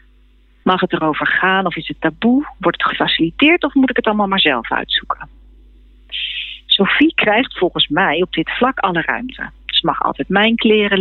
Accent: Dutch